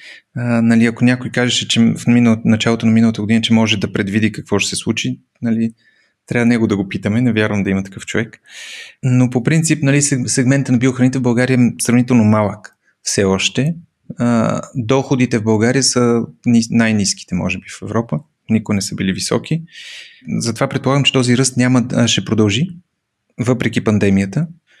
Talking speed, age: 170 wpm, 30-49